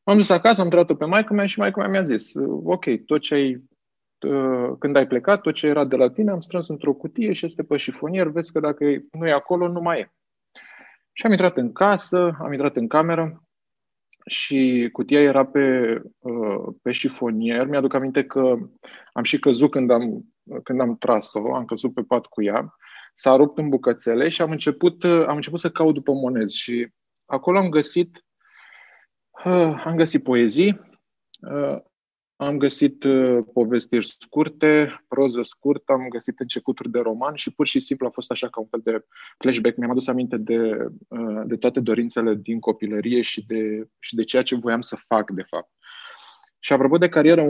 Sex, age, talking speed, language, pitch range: male, 20-39, 180 wpm, Romanian, 120-160 Hz